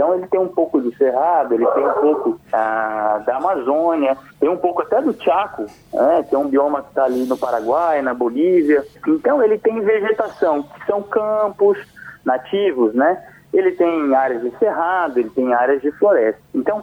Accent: Brazilian